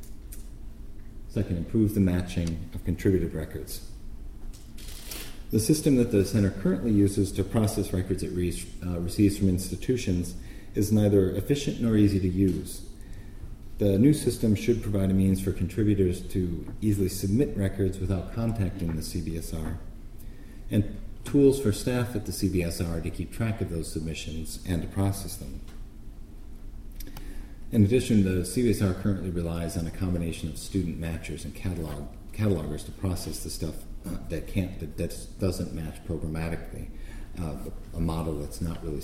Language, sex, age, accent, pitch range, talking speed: English, male, 40-59, American, 85-105 Hz, 145 wpm